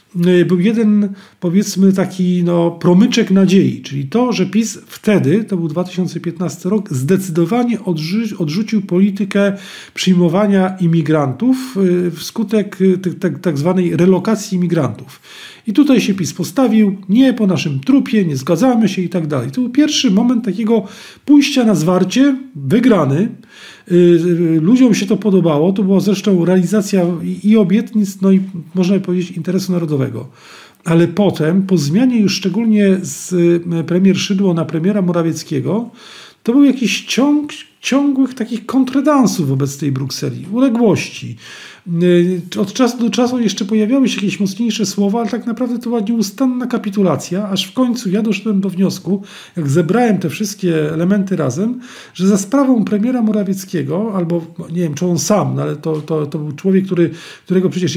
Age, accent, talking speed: 40-59, native, 145 wpm